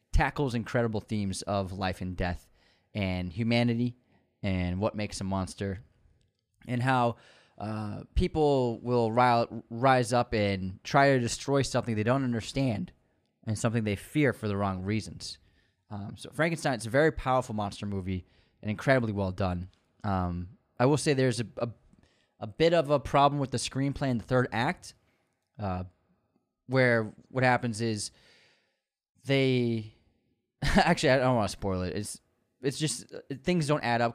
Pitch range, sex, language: 95-125 Hz, male, English